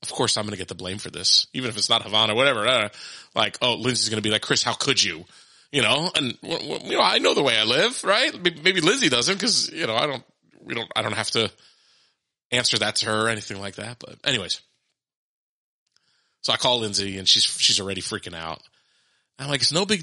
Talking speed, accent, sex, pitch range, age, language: 235 wpm, American, male, 105-140 Hz, 30-49, English